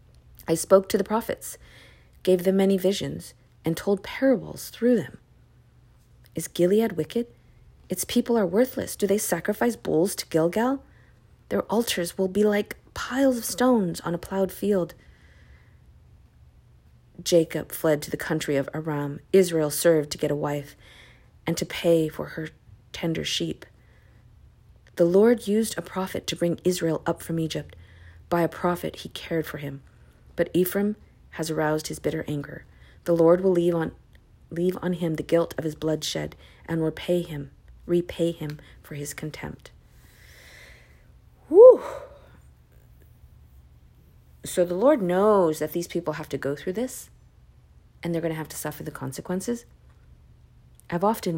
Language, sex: English, female